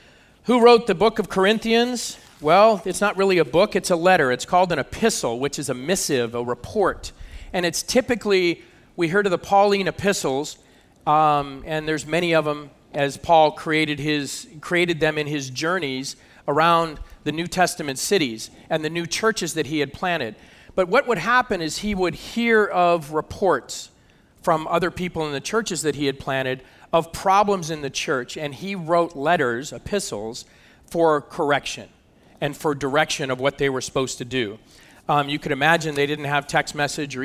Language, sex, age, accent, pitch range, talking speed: English, male, 40-59, American, 140-180 Hz, 185 wpm